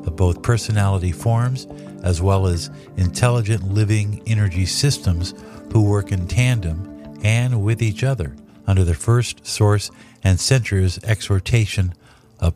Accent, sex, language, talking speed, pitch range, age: American, male, English, 125 wpm, 95-120 Hz, 50-69